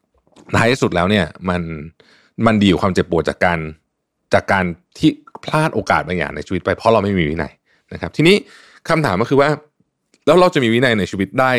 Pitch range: 90-125 Hz